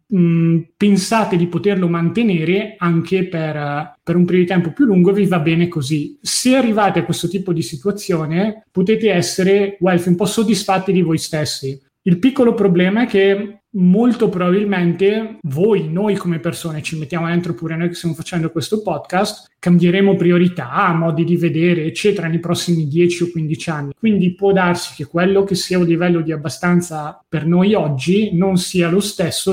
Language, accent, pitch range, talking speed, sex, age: Italian, native, 165-190 Hz, 170 wpm, male, 20-39